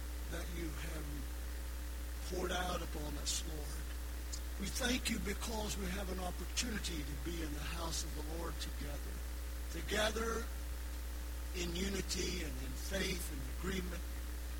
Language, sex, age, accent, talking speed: English, male, 60-79, American, 135 wpm